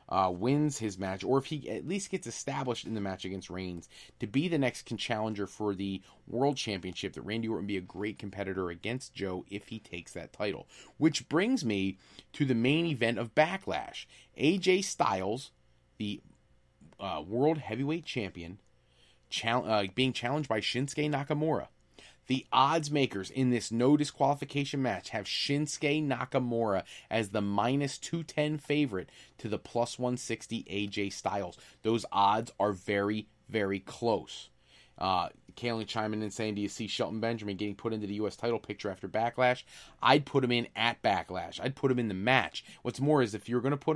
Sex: male